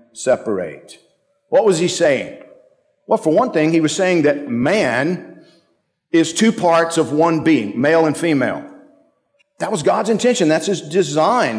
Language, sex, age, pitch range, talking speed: English, male, 50-69, 125-195 Hz, 155 wpm